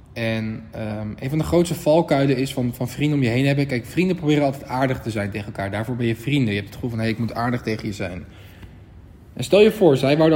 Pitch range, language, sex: 110-130 Hz, Dutch, male